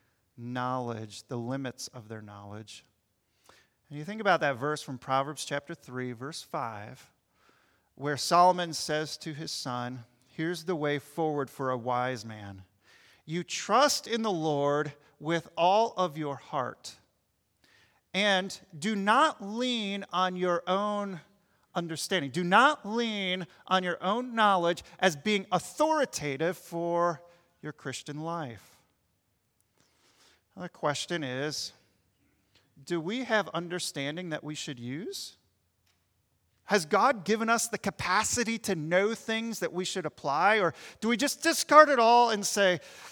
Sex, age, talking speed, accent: male, 40-59, 135 wpm, American